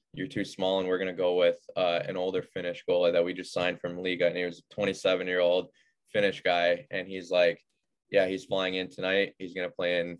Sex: male